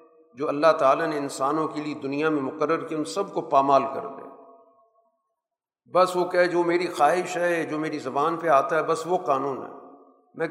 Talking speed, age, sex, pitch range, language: 200 wpm, 50-69, male, 150-225 Hz, Urdu